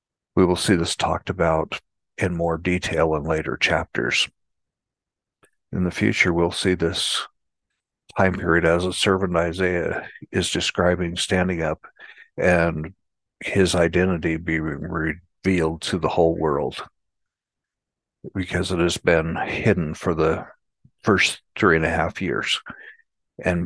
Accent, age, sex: American, 60-79, male